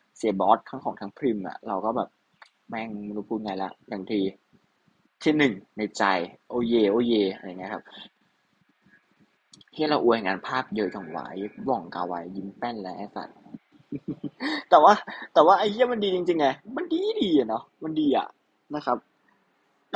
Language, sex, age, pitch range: Thai, male, 20-39, 110-165 Hz